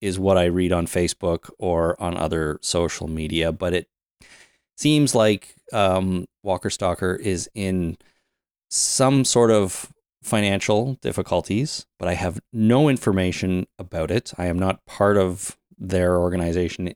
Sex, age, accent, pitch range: male, 30-49, American, 90-110 Hz